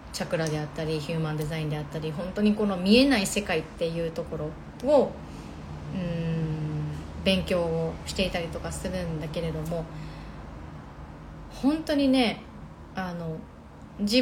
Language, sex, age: Japanese, female, 30-49